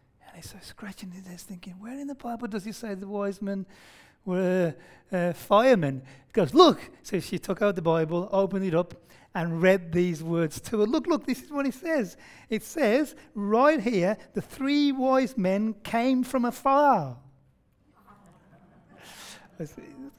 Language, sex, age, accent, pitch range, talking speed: English, male, 30-49, British, 145-205 Hz, 170 wpm